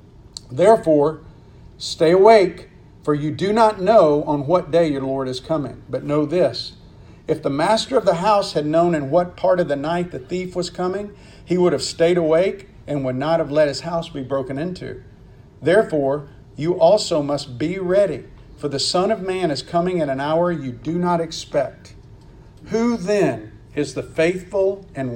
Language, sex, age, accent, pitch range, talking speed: English, male, 50-69, American, 135-180 Hz, 185 wpm